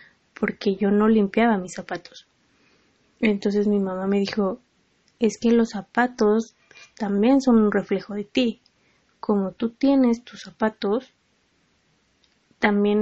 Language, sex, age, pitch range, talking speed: Spanish, female, 20-39, 200-225 Hz, 125 wpm